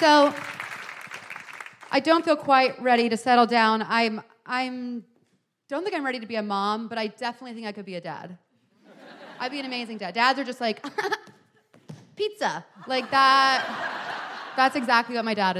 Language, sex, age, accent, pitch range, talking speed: English, female, 30-49, American, 215-270 Hz, 175 wpm